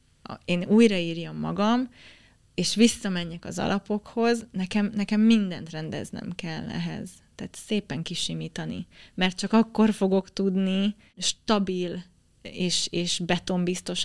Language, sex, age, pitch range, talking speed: Hungarian, female, 20-39, 165-195 Hz, 105 wpm